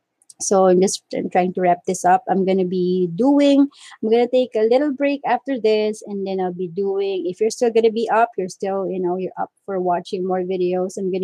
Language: English